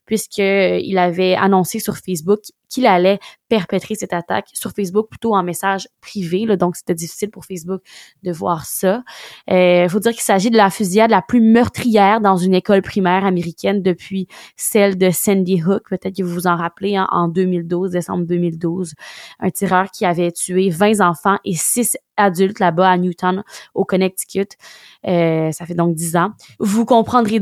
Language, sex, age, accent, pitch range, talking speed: French, female, 20-39, Canadian, 180-205 Hz, 175 wpm